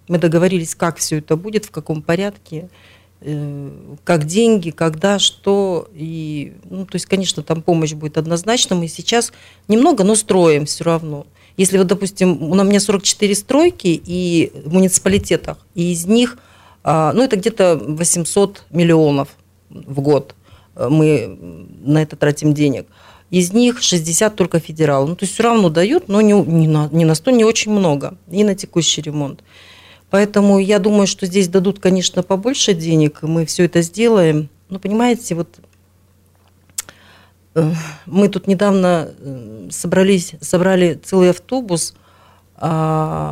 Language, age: Russian, 40-59